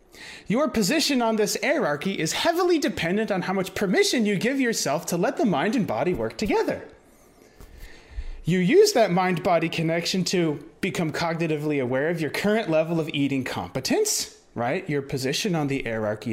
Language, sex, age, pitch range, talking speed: English, male, 30-49, 155-230 Hz, 170 wpm